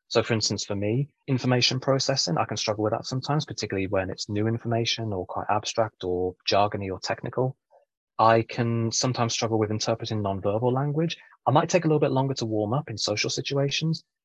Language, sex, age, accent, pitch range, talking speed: English, male, 20-39, British, 105-130 Hz, 195 wpm